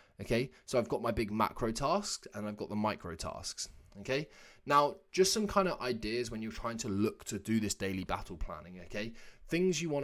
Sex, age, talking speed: male, 20-39, 215 wpm